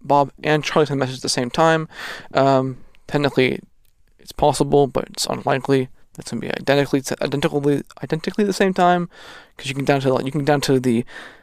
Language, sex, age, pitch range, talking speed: English, male, 20-39, 130-145 Hz, 205 wpm